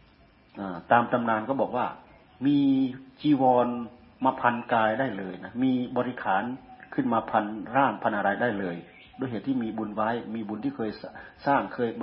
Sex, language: male, Thai